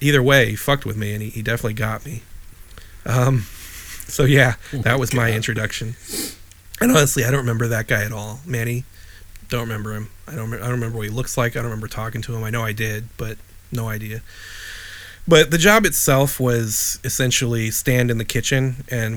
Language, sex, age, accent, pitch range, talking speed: English, male, 30-49, American, 105-125 Hz, 200 wpm